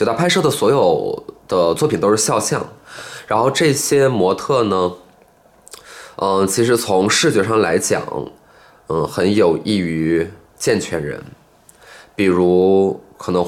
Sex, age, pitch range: male, 20-39, 90-110 Hz